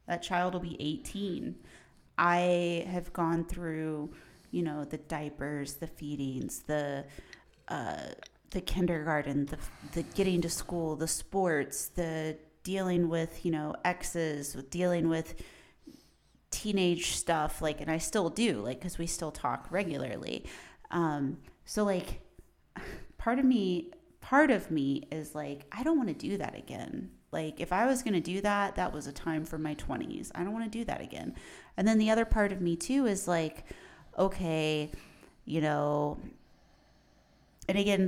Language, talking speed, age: English, 160 wpm, 30-49